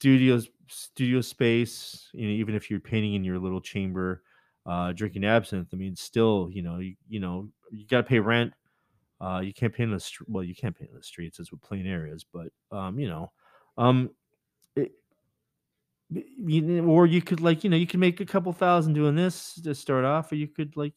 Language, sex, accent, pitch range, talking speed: English, male, American, 100-150 Hz, 215 wpm